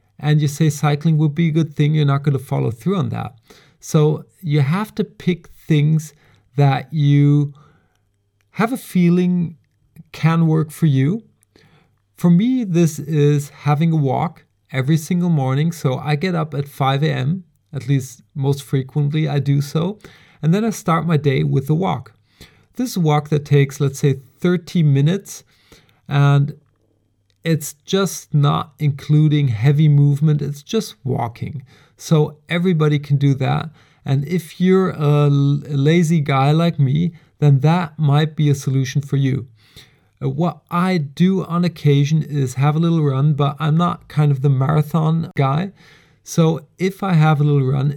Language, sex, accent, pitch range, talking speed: English, male, German, 140-165 Hz, 165 wpm